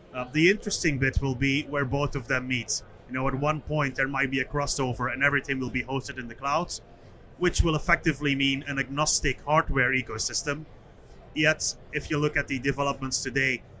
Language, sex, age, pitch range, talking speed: English, male, 30-49, 125-150 Hz, 195 wpm